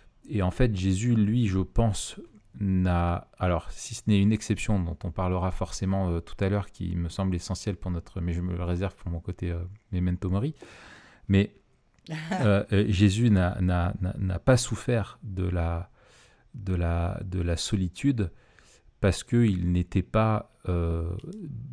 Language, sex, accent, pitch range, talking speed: French, male, French, 90-110 Hz, 170 wpm